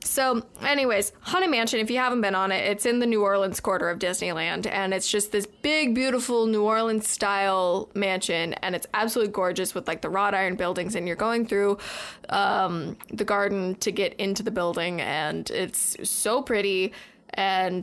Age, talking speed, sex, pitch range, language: 10-29, 180 wpm, female, 190-225 Hz, English